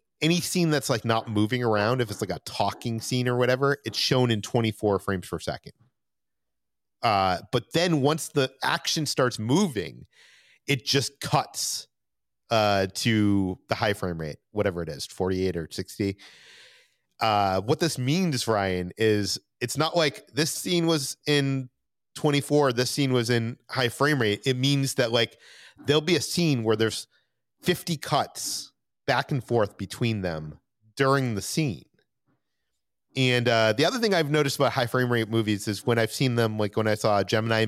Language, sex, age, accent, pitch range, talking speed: English, male, 30-49, American, 110-145 Hz, 170 wpm